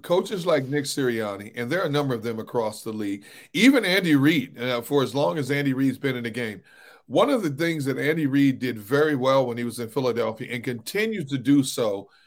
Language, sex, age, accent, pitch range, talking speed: English, male, 40-59, American, 125-150 Hz, 230 wpm